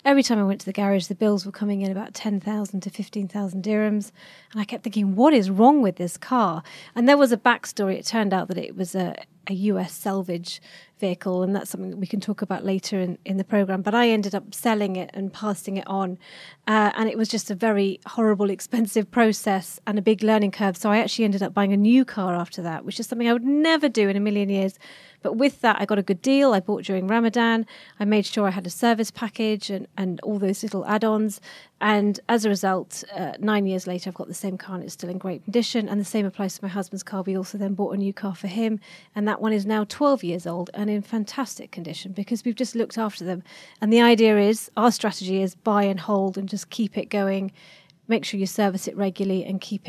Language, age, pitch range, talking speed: English, 30-49, 190-220 Hz, 245 wpm